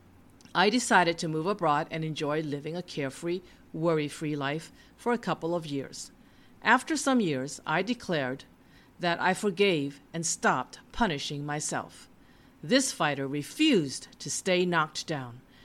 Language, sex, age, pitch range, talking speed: English, female, 50-69, 145-195 Hz, 140 wpm